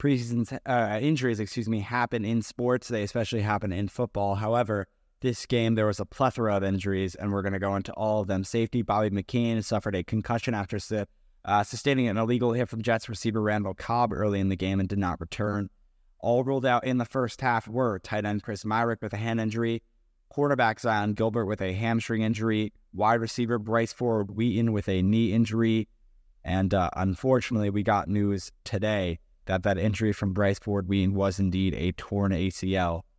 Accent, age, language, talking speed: American, 20-39, English, 190 wpm